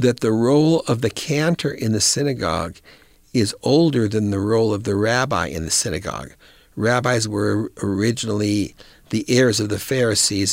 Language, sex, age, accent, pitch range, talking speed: English, male, 60-79, American, 115-150 Hz, 160 wpm